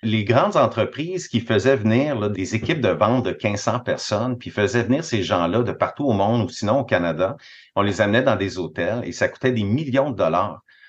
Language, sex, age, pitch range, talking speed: French, male, 30-49, 105-140 Hz, 220 wpm